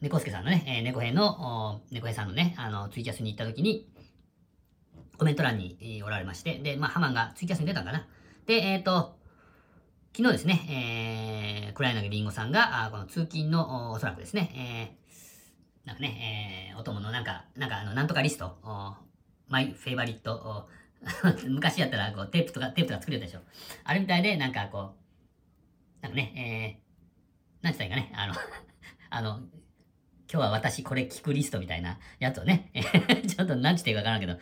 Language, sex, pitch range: Japanese, female, 95-150 Hz